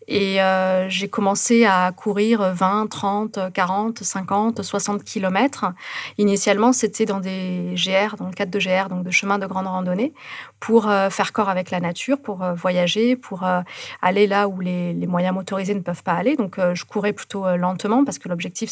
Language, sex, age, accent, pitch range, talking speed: French, female, 30-49, French, 185-215 Hz, 180 wpm